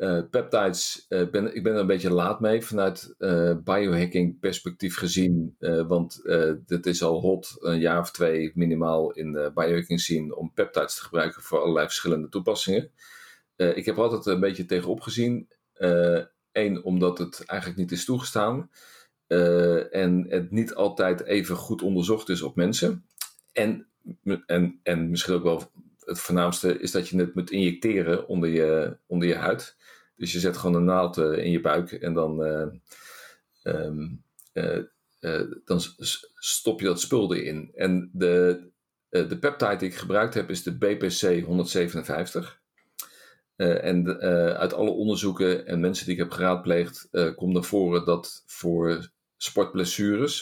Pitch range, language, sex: 85-95 Hz, Dutch, male